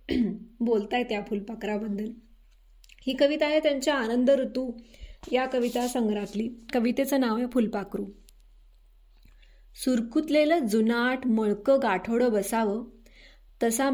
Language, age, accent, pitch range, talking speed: Marathi, 20-39, native, 210-255 Hz, 90 wpm